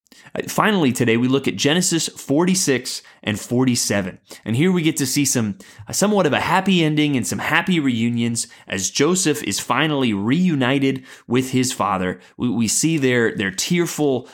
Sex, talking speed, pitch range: male, 165 wpm, 115-155 Hz